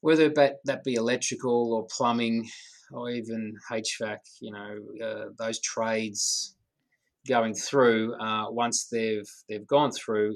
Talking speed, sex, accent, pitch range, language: 125 wpm, male, Australian, 105-125 Hz, English